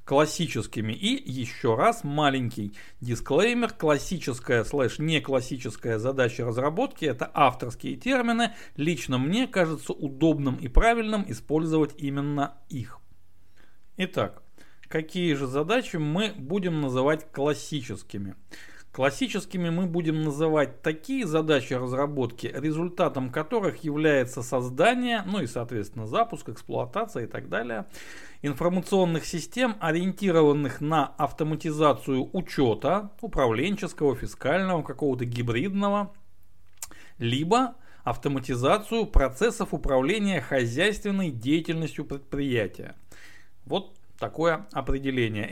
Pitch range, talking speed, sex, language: 125-175 Hz, 90 wpm, male, Russian